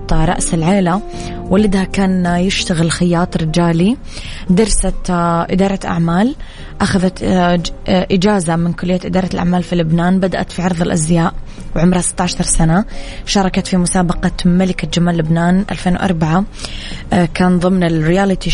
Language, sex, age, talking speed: Arabic, female, 20-39, 115 wpm